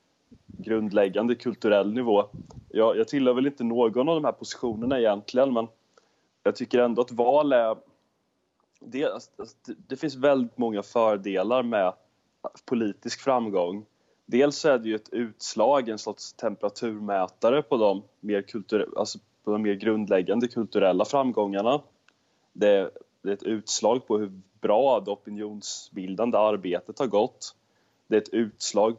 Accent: native